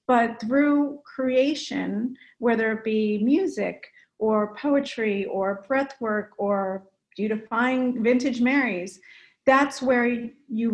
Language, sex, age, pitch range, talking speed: English, female, 40-59, 210-250 Hz, 105 wpm